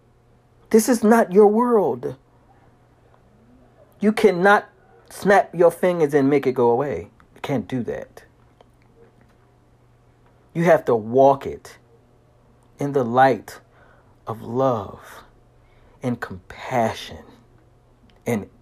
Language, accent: English, American